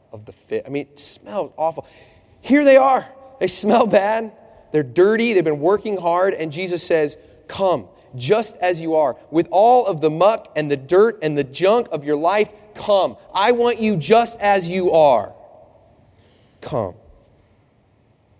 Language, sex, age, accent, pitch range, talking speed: English, male, 30-49, American, 110-165 Hz, 165 wpm